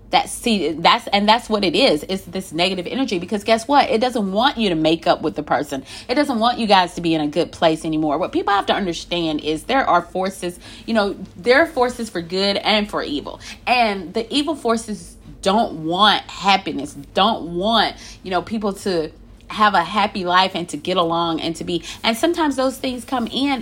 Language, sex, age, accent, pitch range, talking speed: English, female, 30-49, American, 175-230 Hz, 220 wpm